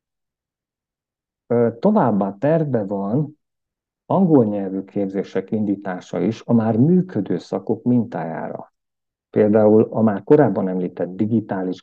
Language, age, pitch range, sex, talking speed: Hungarian, 50-69, 95-120 Hz, male, 95 wpm